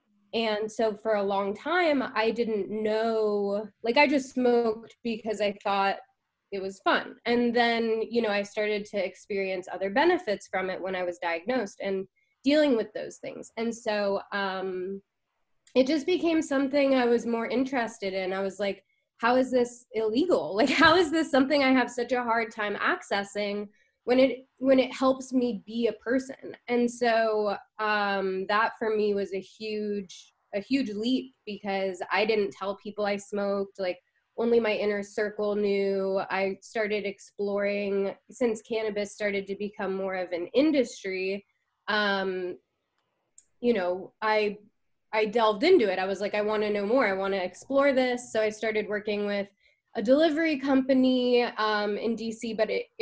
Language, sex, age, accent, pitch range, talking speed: English, female, 20-39, American, 200-240 Hz, 170 wpm